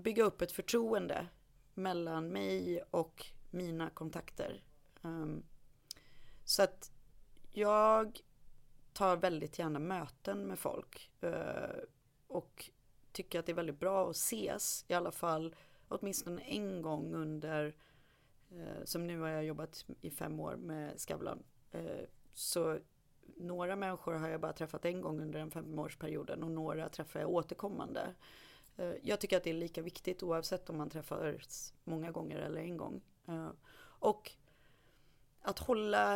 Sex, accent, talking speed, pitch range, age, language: female, native, 135 wpm, 155-180 Hz, 30-49, Swedish